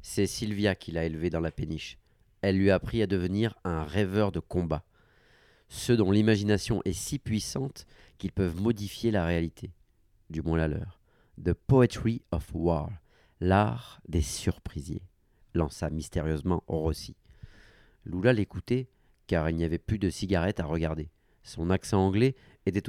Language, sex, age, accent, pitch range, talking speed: French, male, 40-59, French, 90-110 Hz, 165 wpm